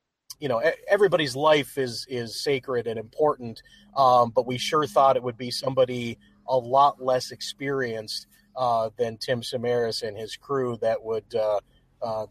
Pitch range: 125-155 Hz